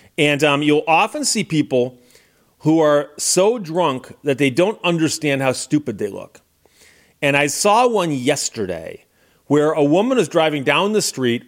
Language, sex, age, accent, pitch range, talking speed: English, male, 40-59, American, 135-185 Hz, 160 wpm